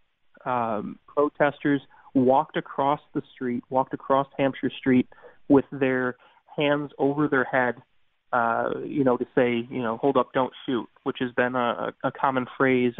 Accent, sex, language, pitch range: American, male, English, 125-140 Hz